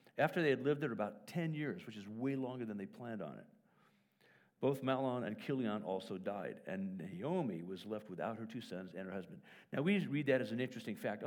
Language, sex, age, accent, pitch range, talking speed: English, male, 50-69, American, 110-170 Hz, 230 wpm